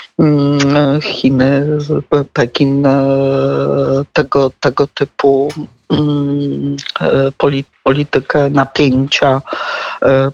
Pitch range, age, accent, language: 130-150 Hz, 50-69, native, Polish